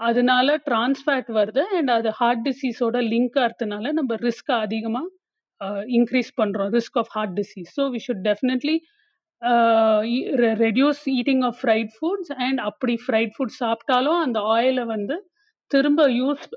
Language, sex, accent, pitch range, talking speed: Tamil, female, native, 225-275 Hz, 135 wpm